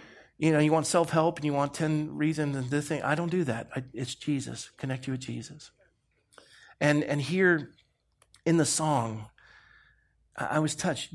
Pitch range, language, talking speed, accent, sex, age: 140-175 Hz, English, 180 wpm, American, male, 50-69